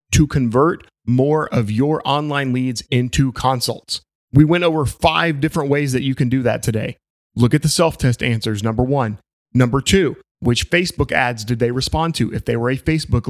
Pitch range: 120-155 Hz